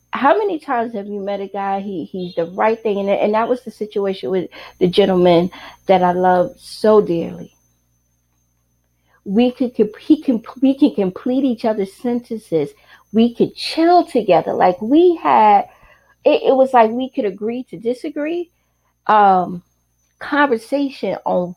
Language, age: English, 30-49